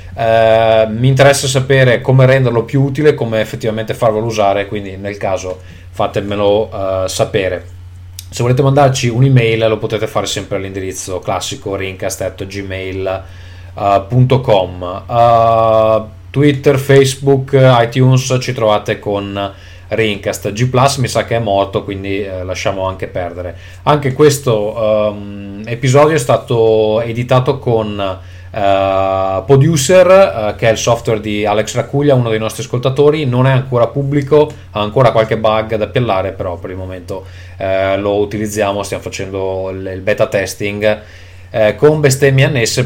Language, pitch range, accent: Italian, 100-130 Hz, native